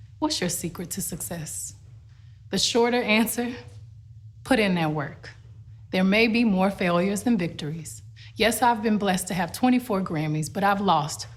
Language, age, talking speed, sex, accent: English, 30-49, 160 wpm, female, American